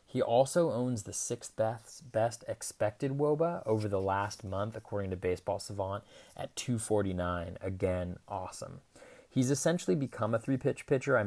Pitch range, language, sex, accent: 95-110 Hz, English, male, American